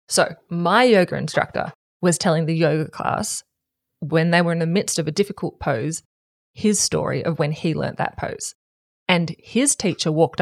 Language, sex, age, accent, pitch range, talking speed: English, female, 20-39, Australian, 160-185 Hz, 180 wpm